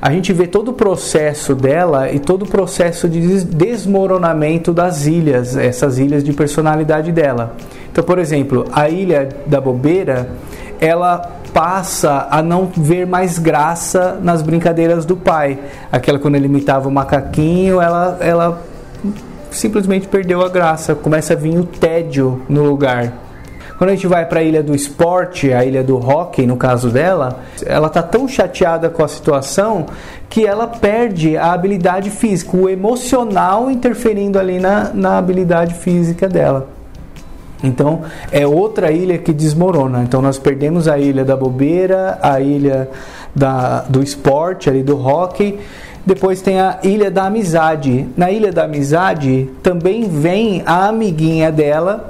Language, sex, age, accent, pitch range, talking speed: Portuguese, male, 20-39, Brazilian, 140-185 Hz, 150 wpm